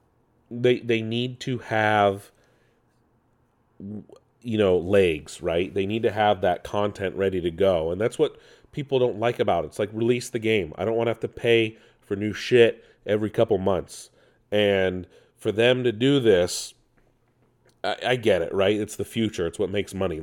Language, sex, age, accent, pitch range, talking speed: English, male, 40-59, American, 100-125 Hz, 185 wpm